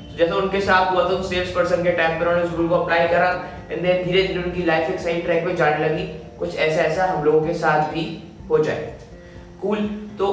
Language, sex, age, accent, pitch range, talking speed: Hindi, male, 20-39, native, 160-195 Hz, 215 wpm